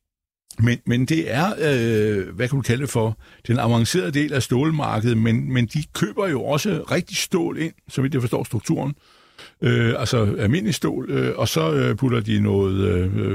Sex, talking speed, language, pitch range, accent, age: male, 185 wpm, Danish, 105-140 Hz, native, 60-79